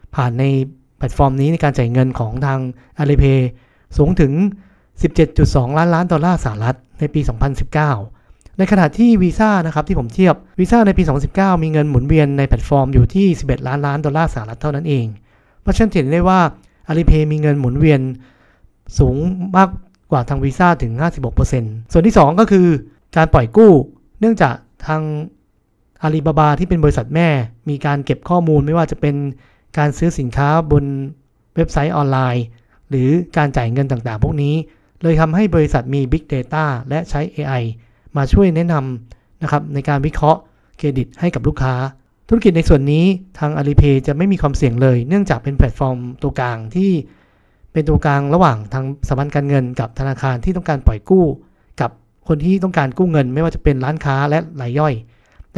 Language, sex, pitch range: Thai, male, 130-165 Hz